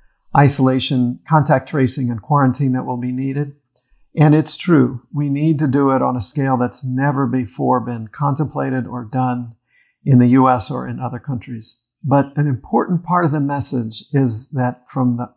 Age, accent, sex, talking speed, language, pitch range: 50-69, American, male, 175 wpm, English, 125-155 Hz